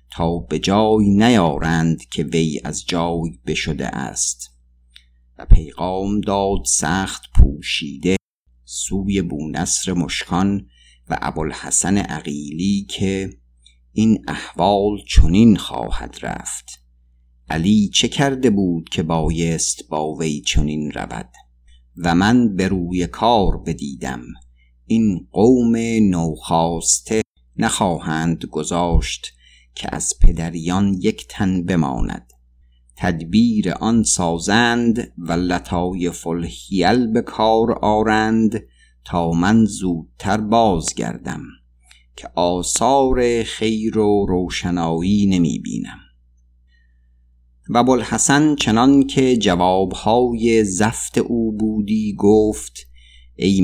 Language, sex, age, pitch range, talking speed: Persian, male, 50-69, 75-110 Hz, 95 wpm